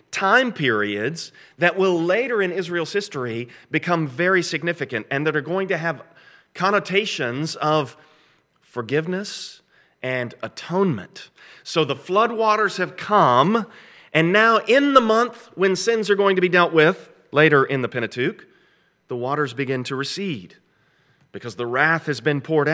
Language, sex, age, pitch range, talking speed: English, male, 40-59, 110-170 Hz, 145 wpm